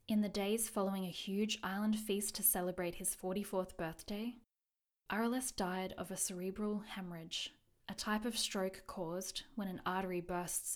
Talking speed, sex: 155 wpm, female